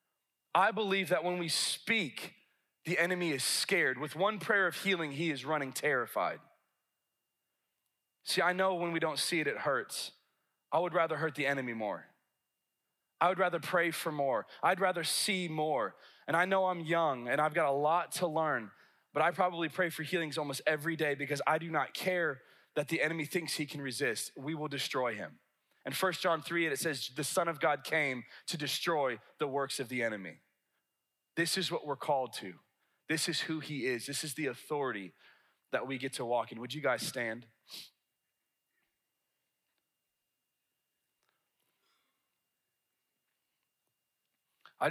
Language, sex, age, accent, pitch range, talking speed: English, male, 20-39, American, 140-175 Hz, 170 wpm